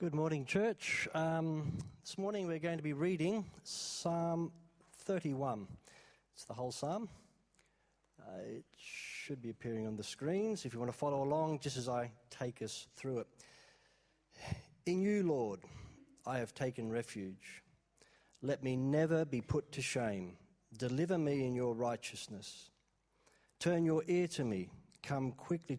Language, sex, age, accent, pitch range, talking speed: English, male, 40-59, Australian, 115-155 Hz, 150 wpm